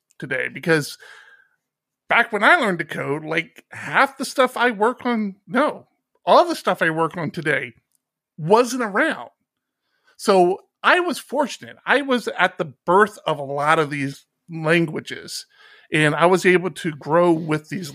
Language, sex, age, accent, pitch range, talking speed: English, male, 50-69, American, 160-240 Hz, 160 wpm